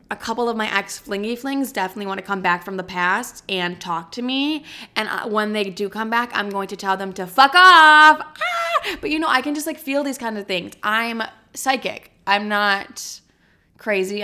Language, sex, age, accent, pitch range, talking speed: English, female, 20-39, American, 190-245 Hz, 215 wpm